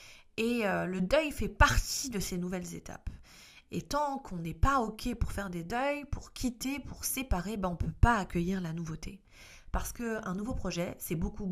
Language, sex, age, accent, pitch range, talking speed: French, female, 30-49, French, 180-245 Hz, 200 wpm